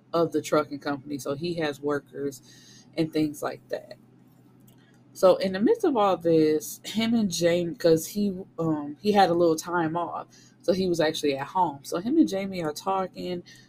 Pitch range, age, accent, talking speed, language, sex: 150-175 Hz, 20-39, American, 185 wpm, English, female